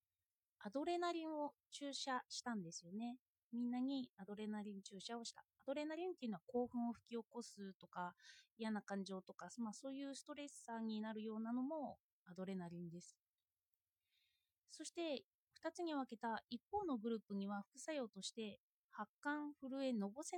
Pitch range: 200-285 Hz